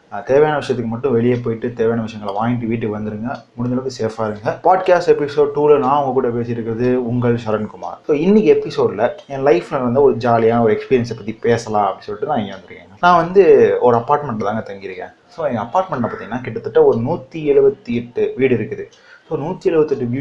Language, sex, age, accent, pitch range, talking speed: Tamil, male, 30-49, native, 115-180 Hz, 170 wpm